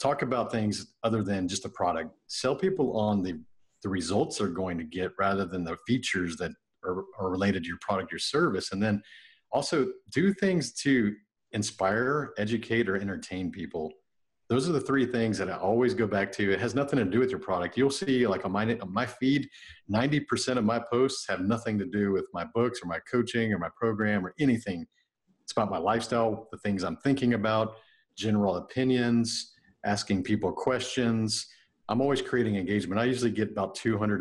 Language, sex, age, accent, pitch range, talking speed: English, male, 40-59, American, 95-120 Hz, 195 wpm